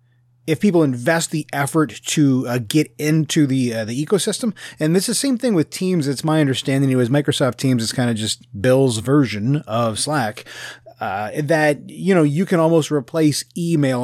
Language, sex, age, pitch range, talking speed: English, male, 30-49, 125-155 Hz, 190 wpm